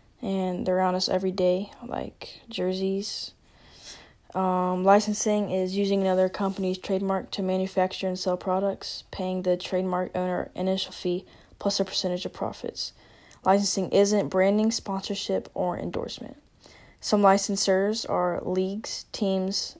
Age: 10-29